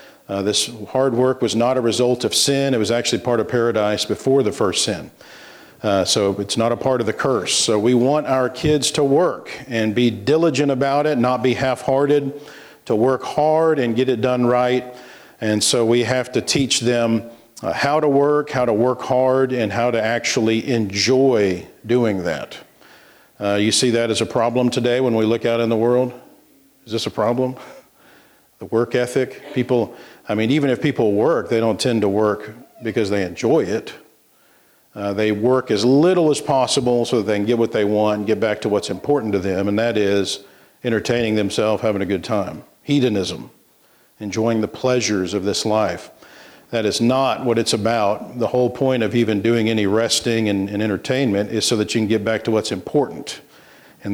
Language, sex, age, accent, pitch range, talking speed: English, male, 50-69, American, 110-130 Hz, 195 wpm